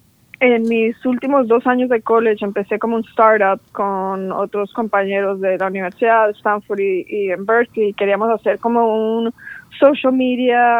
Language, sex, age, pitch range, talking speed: English, female, 20-39, 205-230 Hz, 160 wpm